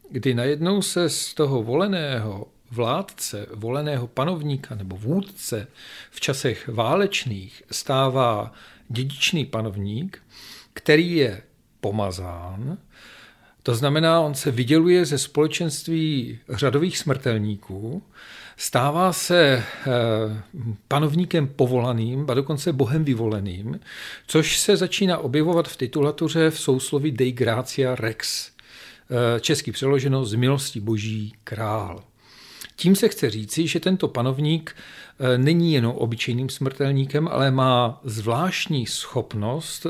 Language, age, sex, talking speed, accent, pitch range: Czech, 50-69, male, 105 wpm, native, 120-160 Hz